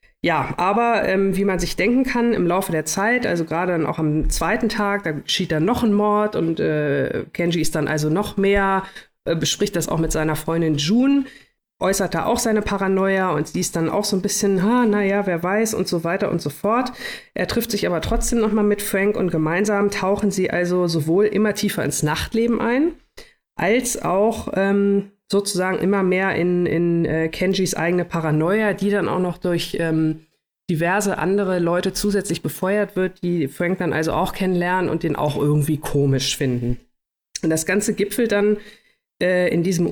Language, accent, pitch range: German, German, 165-205 Hz